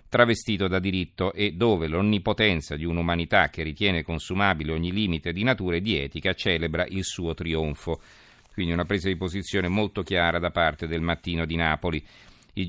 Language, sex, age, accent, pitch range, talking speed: Italian, male, 40-59, native, 90-105 Hz, 170 wpm